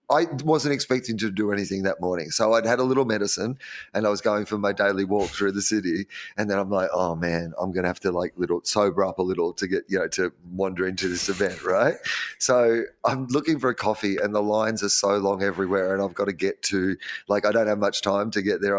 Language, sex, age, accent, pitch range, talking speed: English, male, 30-49, Australian, 100-130 Hz, 250 wpm